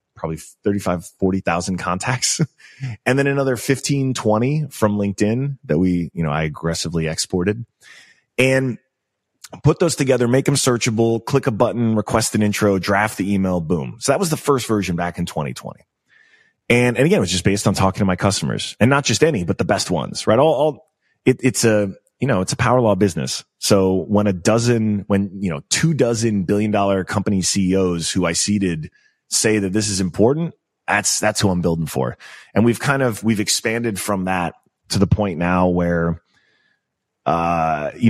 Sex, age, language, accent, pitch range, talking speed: male, 30-49, English, American, 90-115 Hz, 185 wpm